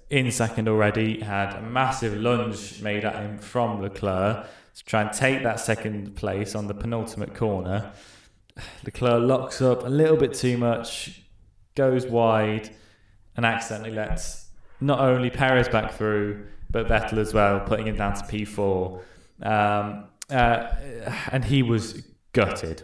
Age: 10-29